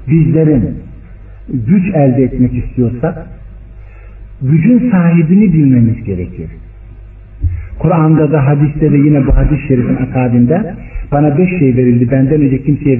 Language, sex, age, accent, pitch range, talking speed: Turkish, male, 60-79, native, 105-150 Hz, 110 wpm